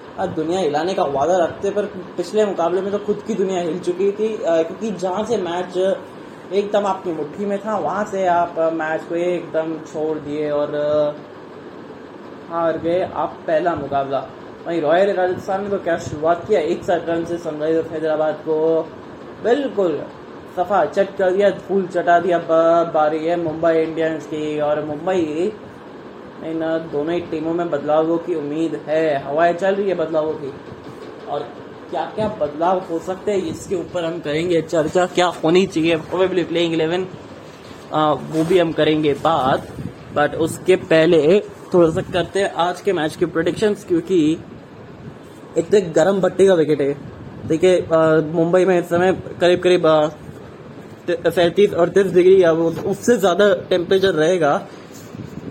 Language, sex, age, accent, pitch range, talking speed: English, male, 20-39, Indian, 160-185 Hz, 100 wpm